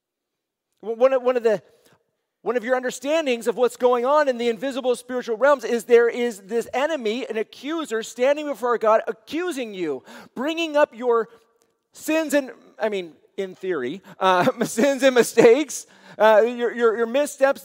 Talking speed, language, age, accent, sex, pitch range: 165 wpm, English, 40-59, American, male, 215-255 Hz